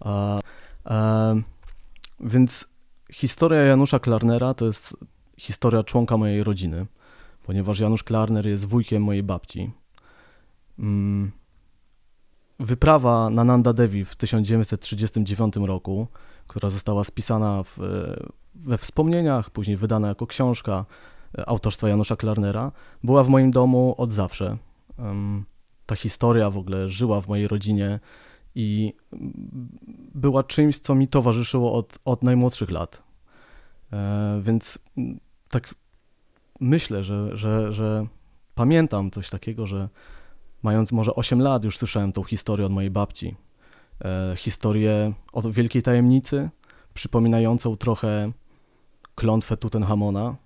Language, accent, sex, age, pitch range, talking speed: Polish, native, male, 20-39, 100-120 Hz, 110 wpm